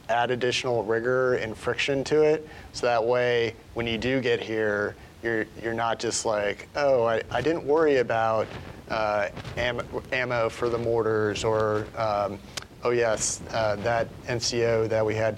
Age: 30-49